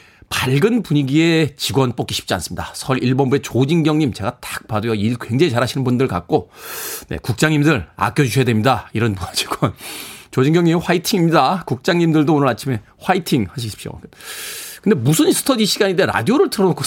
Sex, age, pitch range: male, 40-59, 110-185 Hz